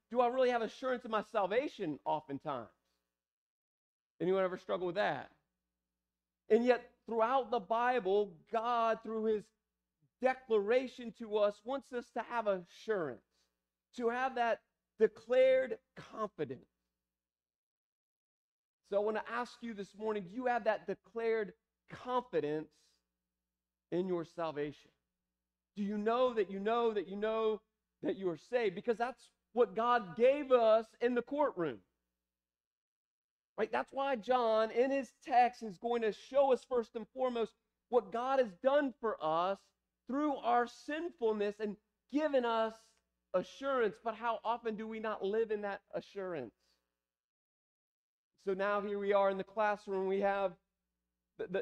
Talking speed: 145 wpm